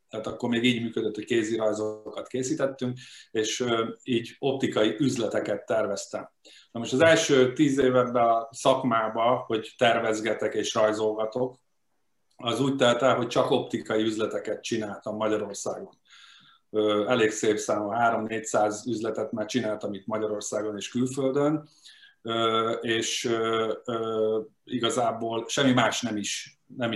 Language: Hungarian